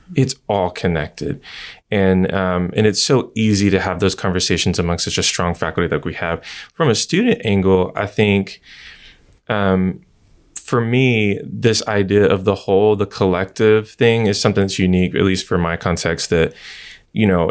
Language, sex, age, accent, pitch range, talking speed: English, male, 20-39, American, 85-105 Hz, 170 wpm